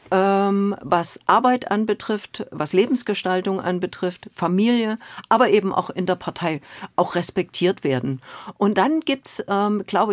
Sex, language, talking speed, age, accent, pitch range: female, German, 125 wpm, 50-69, German, 170-210 Hz